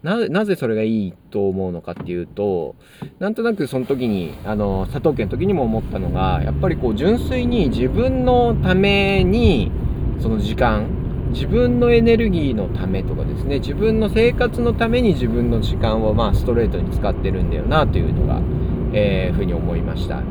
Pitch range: 95-150 Hz